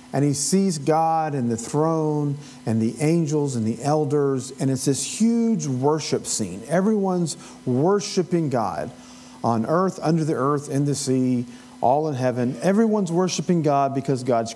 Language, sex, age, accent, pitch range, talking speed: English, male, 40-59, American, 130-180 Hz, 155 wpm